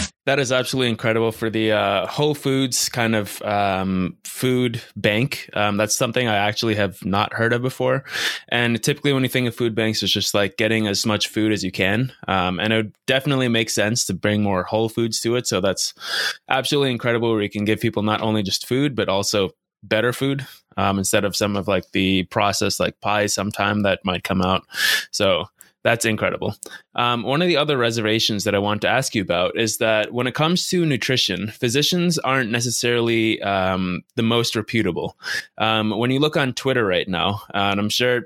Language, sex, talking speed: English, male, 205 wpm